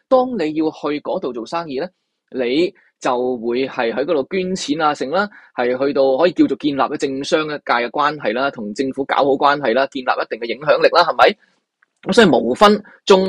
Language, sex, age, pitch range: Chinese, male, 20-39, 130-180 Hz